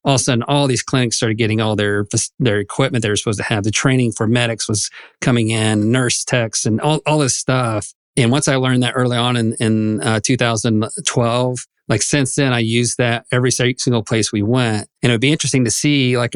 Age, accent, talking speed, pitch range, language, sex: 40-59, American, 225 wpm, 115-140 Hz, English, male